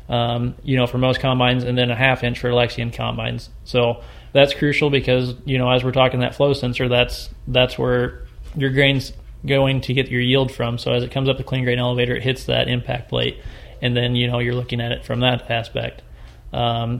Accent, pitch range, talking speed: American, 120-130 Hz, 220 wpm